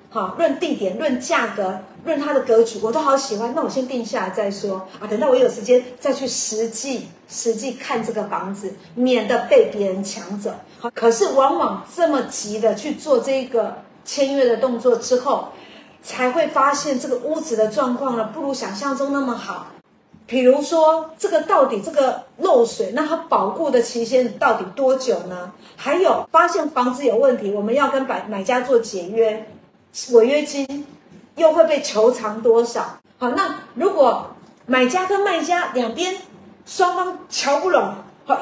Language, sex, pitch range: Chinese, female, 225-290 Hz